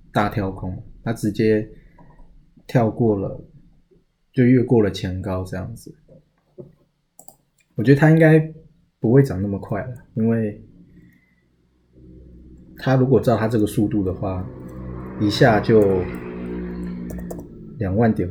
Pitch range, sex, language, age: 95-125 Hz, male, Chinese, 20-39